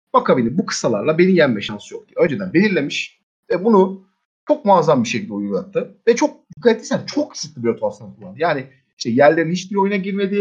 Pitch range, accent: 140-230 Hz, native